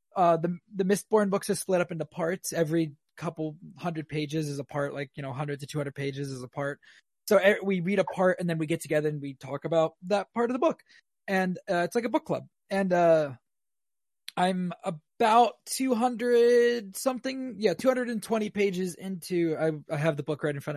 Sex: male